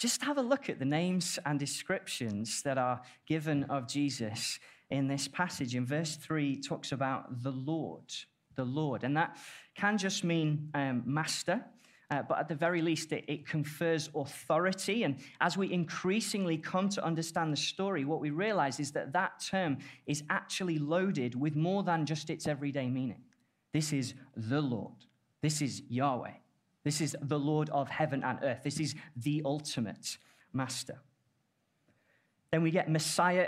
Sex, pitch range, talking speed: male, 140-175 Hz, 170 wpm